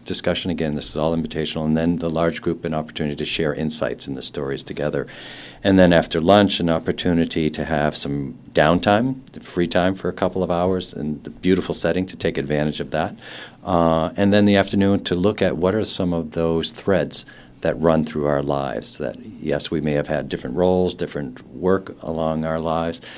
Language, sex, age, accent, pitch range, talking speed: English, male, 50-69, American, 75-90 Hz, 200 wpm